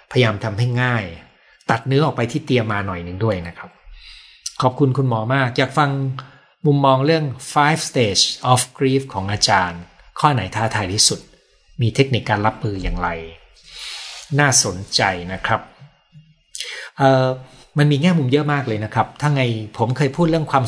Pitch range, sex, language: 100-135 Hz, male, Thai